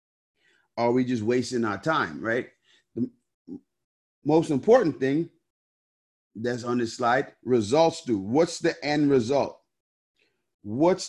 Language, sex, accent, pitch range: English, male, American, 120-155 Hz